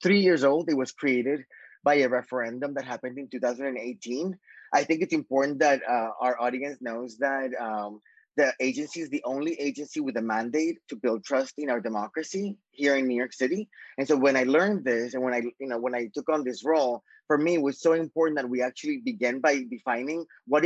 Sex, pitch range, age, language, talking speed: male, 130-160 Hz, 20-39, English, 215 wpm